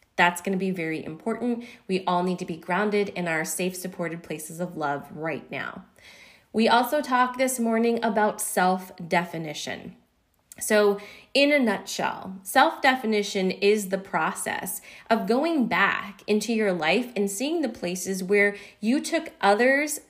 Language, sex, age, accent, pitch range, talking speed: English, female, 20-39, American, 180-230 Hz, 150 wpm